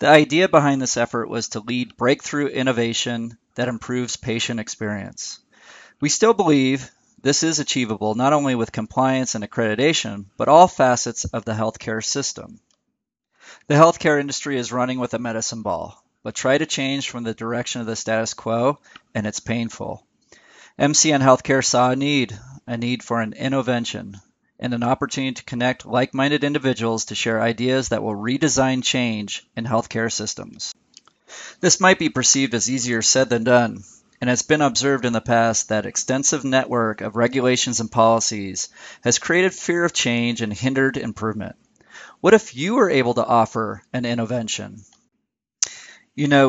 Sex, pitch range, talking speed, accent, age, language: male, 115-135 Hz, 165 wpm, American, 40-59, English